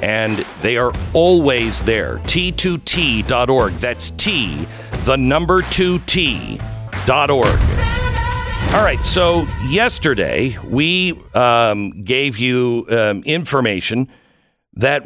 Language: English